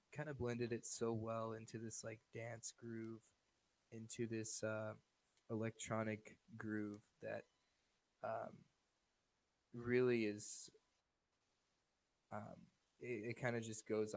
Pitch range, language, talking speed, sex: 105-120 Hz, English, 110 wpm, male